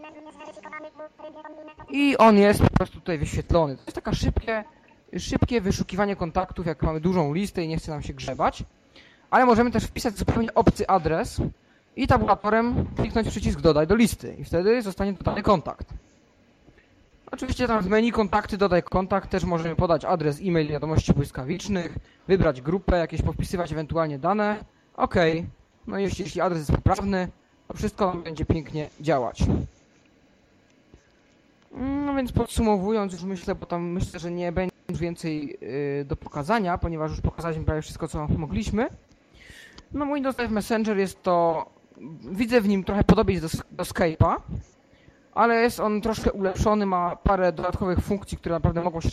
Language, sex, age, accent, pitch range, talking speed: Polish, male, 20-39, native, 170-220 Hz, 150 wpm